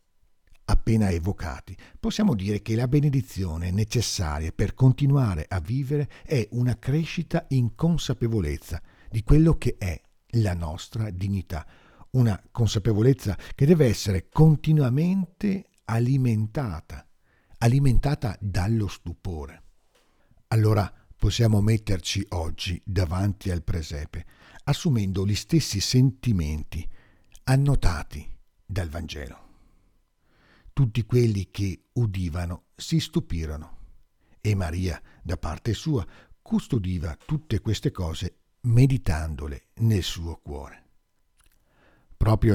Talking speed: 95 wpm